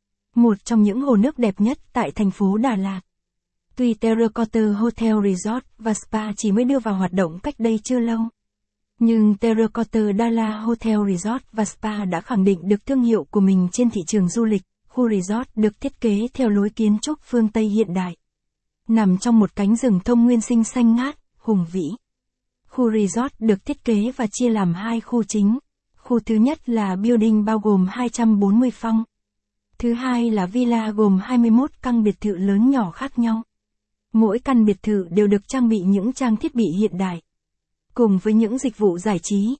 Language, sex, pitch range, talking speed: Vietnamese, female, 205-235 Hz, 195 wpm